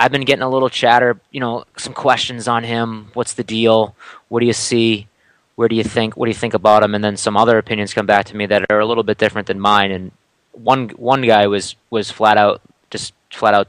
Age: 20-39